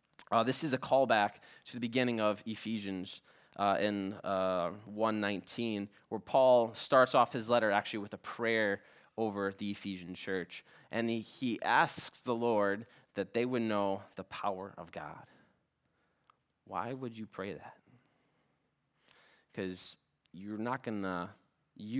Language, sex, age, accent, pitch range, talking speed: English, male, 20-39, American, 95-115 Hz, 140 wpm